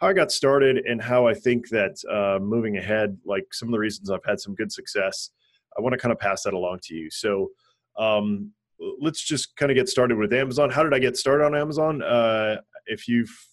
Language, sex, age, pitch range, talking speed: English, male, 30-49, 105-135 Hz, 230 wpm